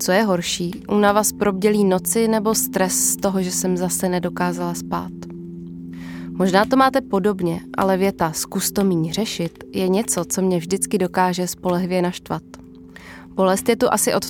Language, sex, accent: Czech, female, native